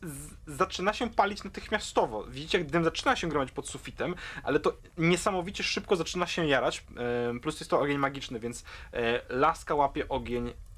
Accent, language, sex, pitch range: native, Polish, male, 125-160 Hz